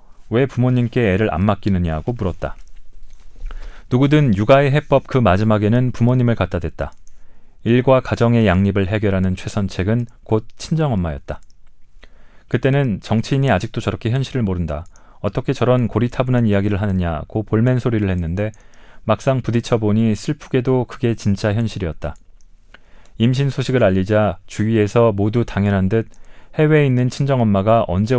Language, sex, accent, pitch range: Korean, male, native, 100-125 Hz